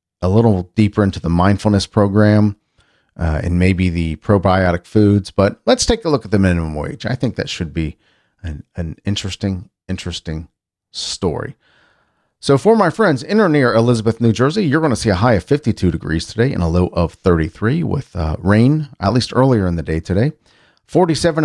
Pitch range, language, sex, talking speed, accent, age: 95-145 Hz, English, male, 190 wpm, American, 40-59